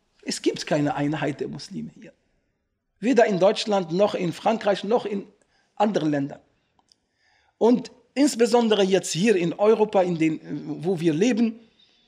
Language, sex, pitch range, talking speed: German, male, 155-225 Hz, 140 wpm